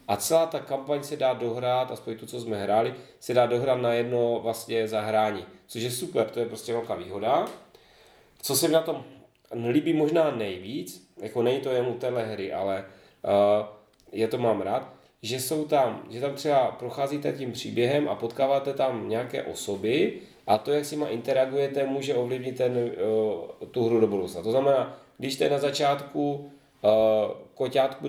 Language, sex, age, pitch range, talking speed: Czech, male, 30-49, 115-145 Hz, 175 wpm